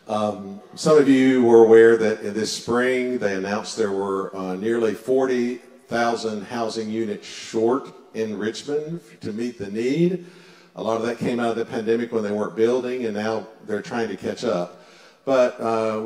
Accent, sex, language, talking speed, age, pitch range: American, male, English, 175 wpm, 50-69, 110-135 Hz